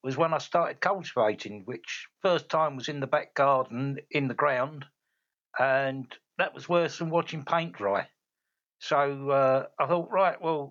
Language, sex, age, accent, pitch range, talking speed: English, male, 60-79, British, 130-170 Hz, 170 wpm